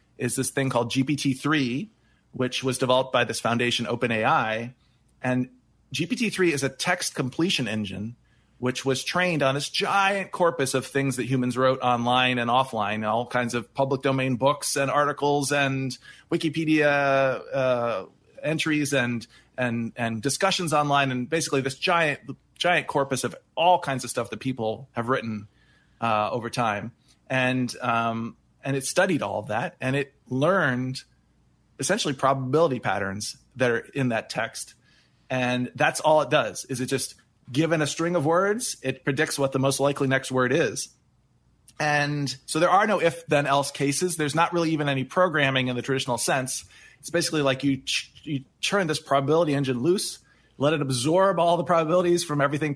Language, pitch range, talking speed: English, 125-150 Hz, 170 wpm